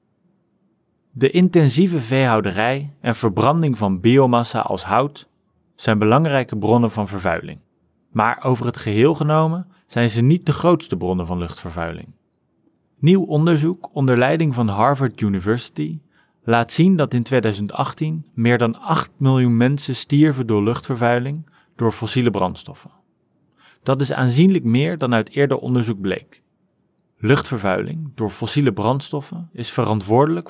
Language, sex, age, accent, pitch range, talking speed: English, male, 30-49, Dutch, 110-150 Hz, 130 wpm